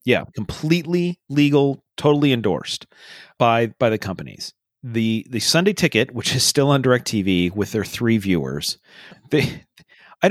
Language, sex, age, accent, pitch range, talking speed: English, male, 40-59, American, 105-145 Hz, 140 wpm